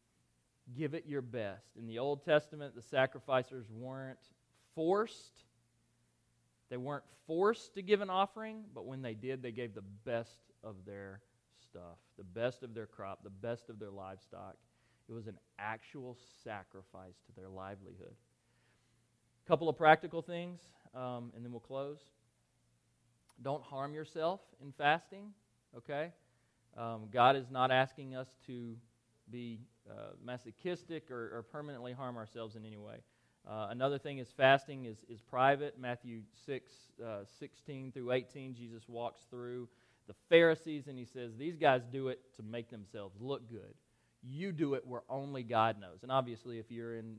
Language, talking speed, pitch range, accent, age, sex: English, 160 wpm, 110-135 Hz, American, 30-49, male